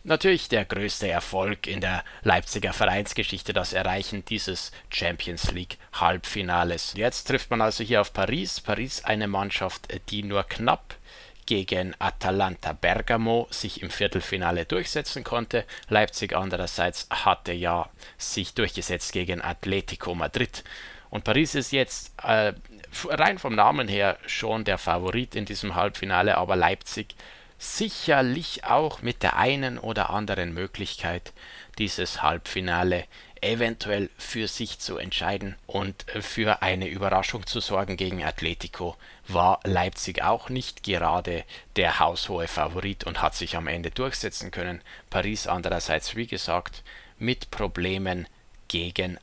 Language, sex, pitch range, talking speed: German, male, 90-110 Hz, 125 wpm